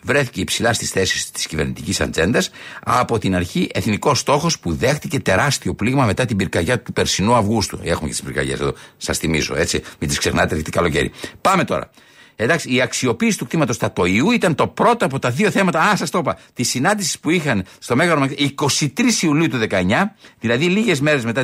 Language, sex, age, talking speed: Greek, male, 60-79, 190 wpm